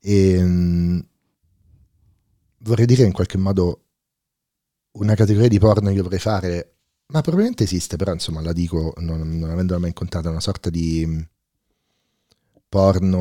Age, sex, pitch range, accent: 40-59, male, 80-100 Hz, native